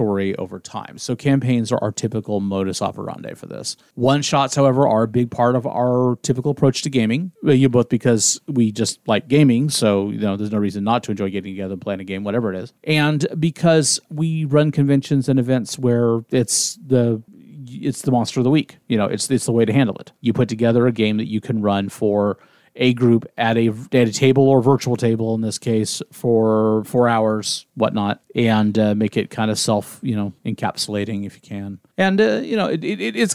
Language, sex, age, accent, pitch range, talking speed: English, male, 40-59, American, 105-130 Hz, 215 wpm